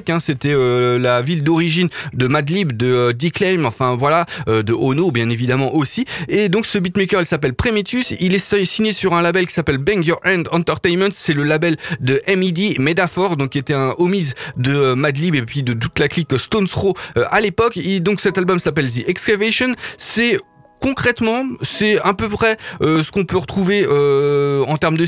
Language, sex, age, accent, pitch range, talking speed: French, male, 20-39, French, 140-185 Hz, 205 wpm